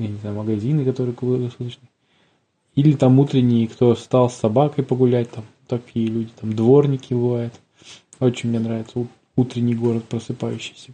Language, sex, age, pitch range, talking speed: Russian, male, 20-39, 115-130 Hz, 145 wpm